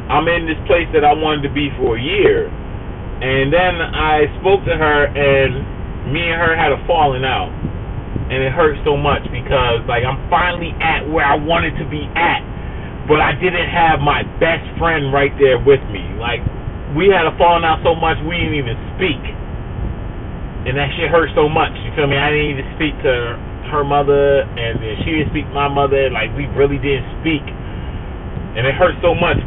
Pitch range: 110-155 Hz